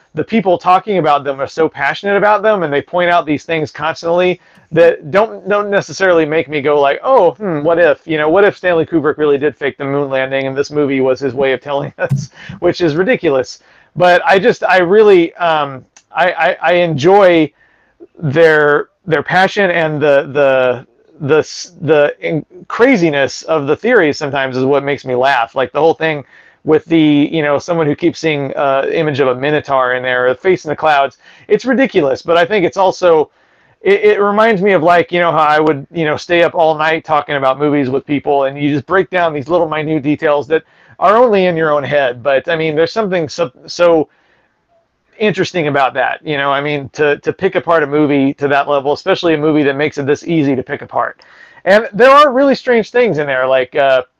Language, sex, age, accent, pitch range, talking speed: English, male, 40-59, American, 145-175 Hz, 215 wpm